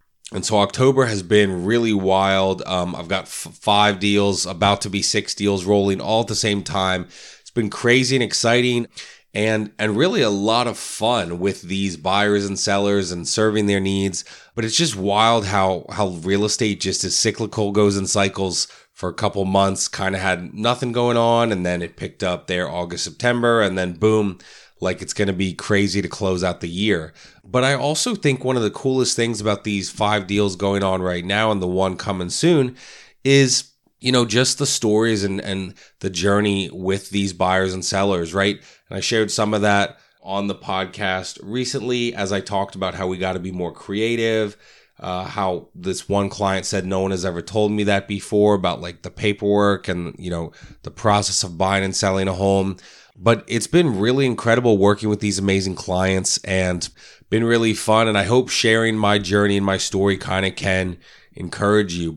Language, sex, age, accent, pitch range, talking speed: English, male, 20-39, American, 95-110 Hz, 200 wpm